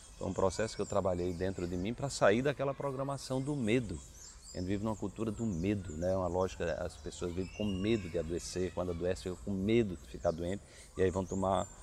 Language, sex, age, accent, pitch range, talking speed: Portuguese, male, 40-59, Brazilian, 85-120 Hz, 225 wpm